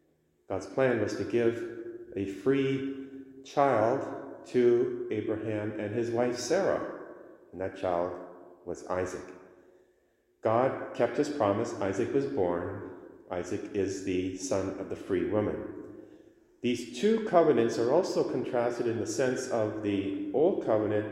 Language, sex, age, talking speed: English, male, 40-59, 135 wpm